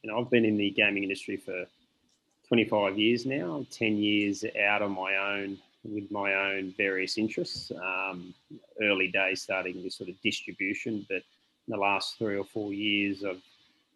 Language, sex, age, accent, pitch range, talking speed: English, male, 30-49, Australian, 95-110 Hz, 170 wpm